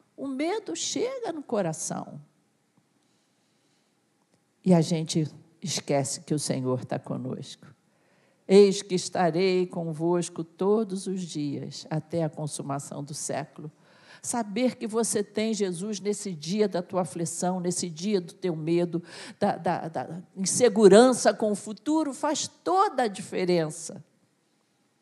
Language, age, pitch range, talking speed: Portuguese, 50-69, 160-215 Hz, 125 wpm